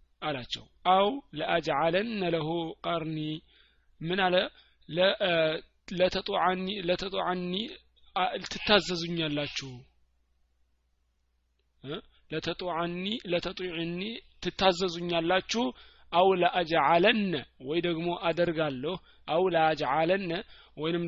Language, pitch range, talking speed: Amharic, 145-185 Hz, 70 wpm